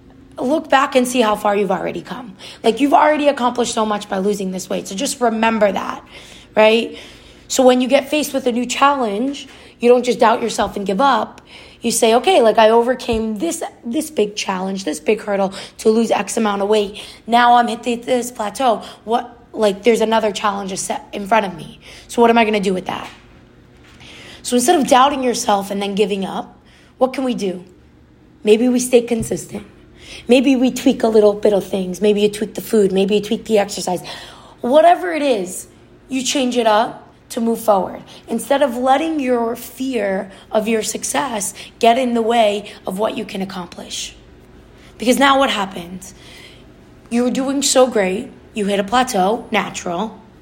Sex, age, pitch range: female, 20-39, 195-245 Hz